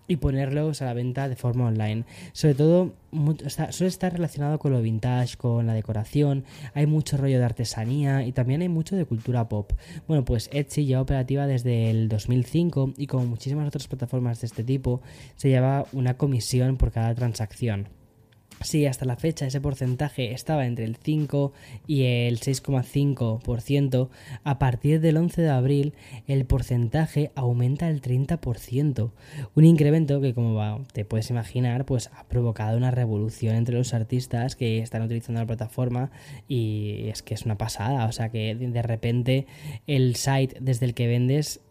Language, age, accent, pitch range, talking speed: Spanish, 10-29, Spanish, 120-140 Hz, 165 wpm